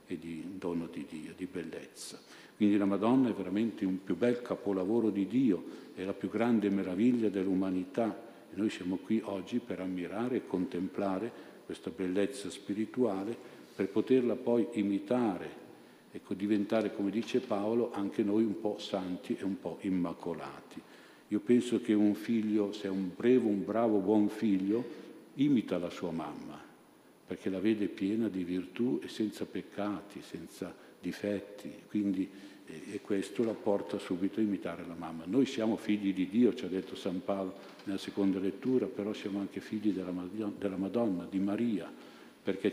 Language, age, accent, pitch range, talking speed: Italian, 50-69, native, 95-110 Hz, 160 wpm